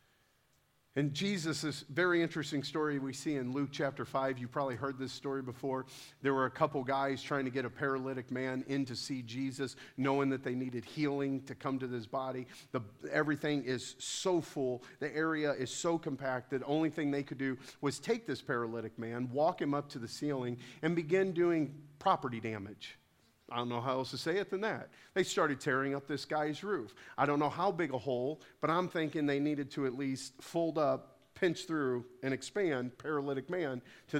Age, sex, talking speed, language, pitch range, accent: 50-69, male, 205 wpm, English, 130-160 Hz, American